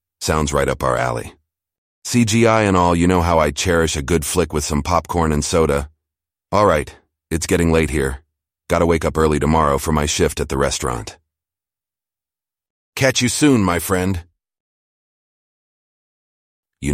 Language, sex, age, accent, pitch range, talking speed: English, male, 40-59, American, 75-90 Hz, 155 wpm